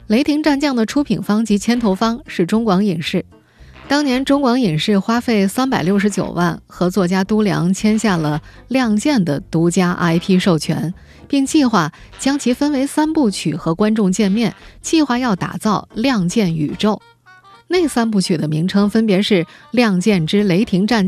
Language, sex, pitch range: Chinese, female, 180-240 Hz